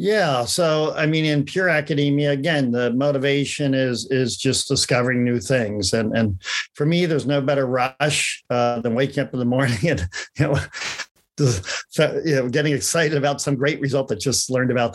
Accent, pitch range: American, 120-145 Hz